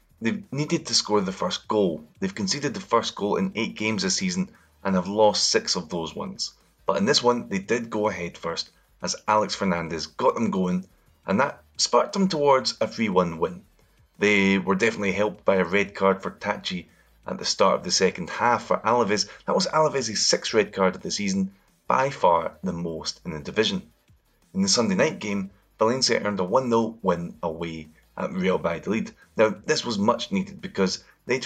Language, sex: English, male